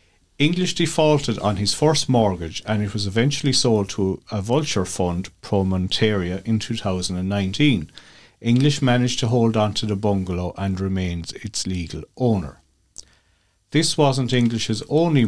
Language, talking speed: English, 140 wpm